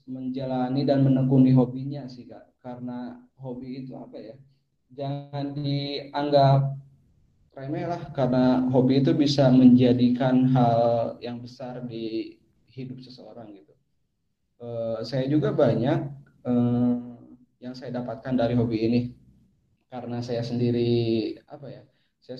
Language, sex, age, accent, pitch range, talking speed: Indonesian, male, 20-39, native, 115-130 Hz, 120 wpm